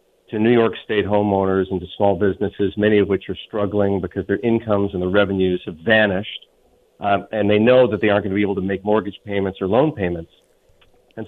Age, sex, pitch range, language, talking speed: 50-69, male, 100-120 Hz, English, 220 wpm